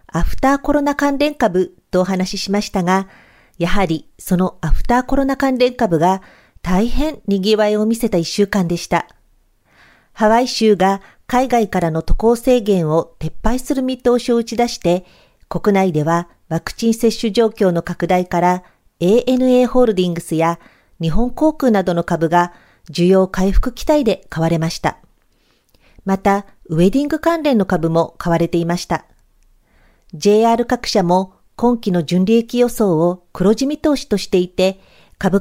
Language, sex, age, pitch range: Japanese, female, 50-69, 175-240 Hz